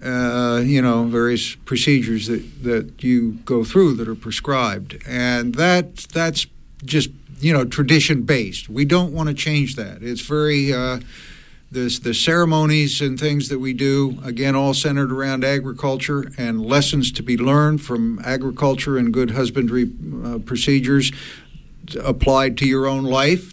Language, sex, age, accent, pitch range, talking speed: English, male, 60-79, American, 125-145 Hz, 155 wpm